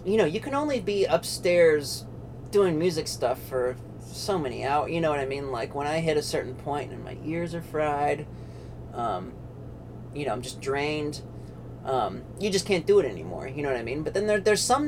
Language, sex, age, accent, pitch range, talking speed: English, male, 30-49, American, 125-170 Hz, 215 wpm